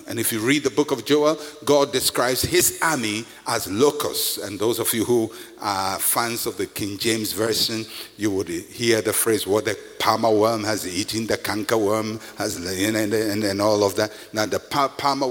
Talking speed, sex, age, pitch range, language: 200 wpm, male, 60-79, 115-170 Hz, English